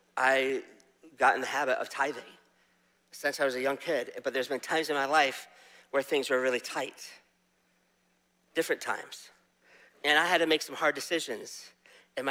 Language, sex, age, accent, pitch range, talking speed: English, male, 50-69, American, 120-160 Hz, 175 wpm